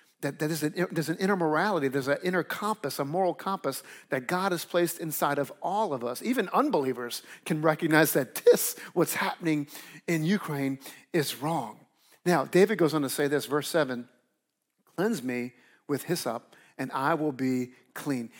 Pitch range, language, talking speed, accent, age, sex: 150-190 Hz, English, 175 wpm, American, 50-69, male